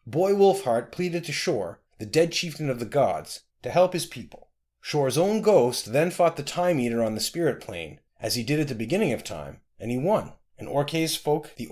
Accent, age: American, 30-49